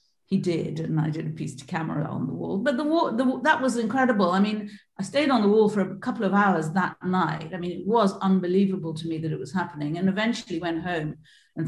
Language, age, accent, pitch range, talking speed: English, 50-69, British, 160-190 Hz, 250 wpm